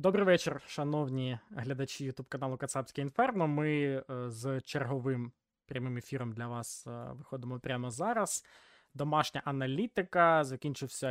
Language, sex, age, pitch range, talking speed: Ukrainian, male, 20-39, 125-155 Hz, 110 wpm